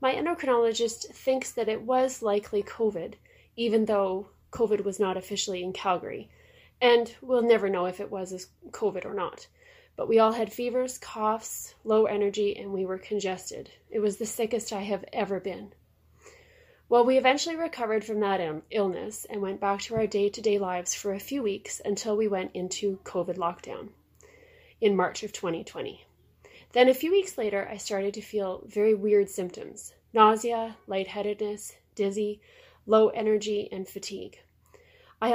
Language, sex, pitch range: English, female, 195-230 Hz